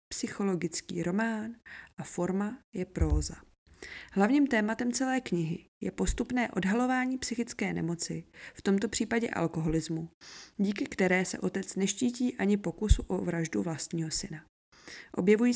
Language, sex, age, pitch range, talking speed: Czech, female, 20-39, 170-225 Hz, 120 wpm